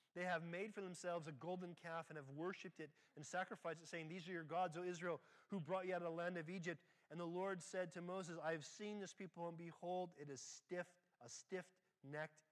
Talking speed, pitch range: 235 wpm, 150-185 Hz